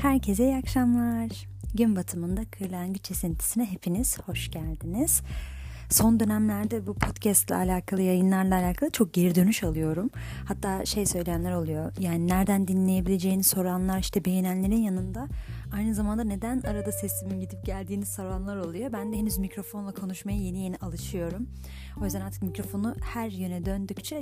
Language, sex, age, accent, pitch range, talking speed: Turkish, female, 30-49, native, 165-215 Hz, 140 wpm